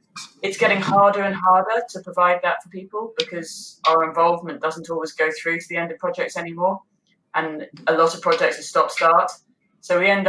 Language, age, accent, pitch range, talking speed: English, 20-39, British, 160-190 Hz, 200 wpm